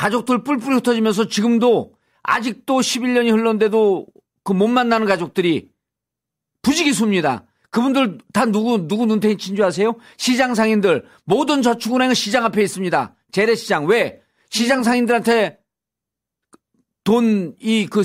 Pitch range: 215-260 Hz